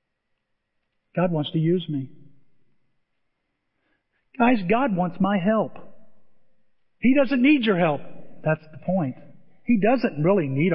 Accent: American